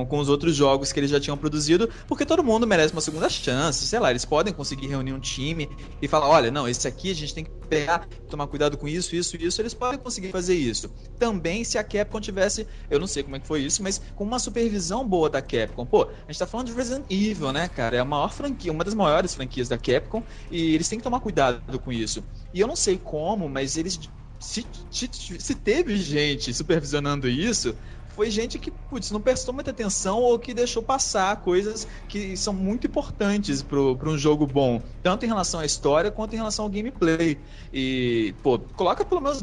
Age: 20-39